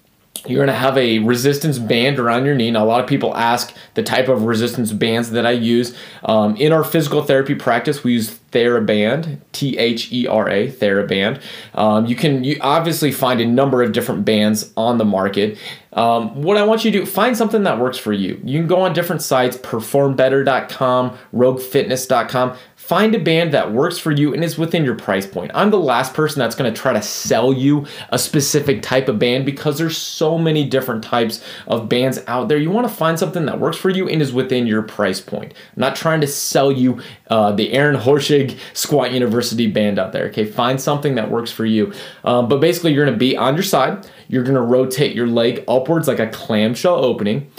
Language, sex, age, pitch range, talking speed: English, male, 30-49, 120-155 Hz, 210 wpm